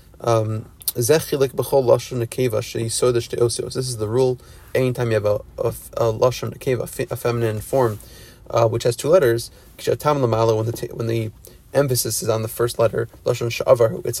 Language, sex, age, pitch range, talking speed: English, male, 30-49, 115-130 Hz, 115 wpm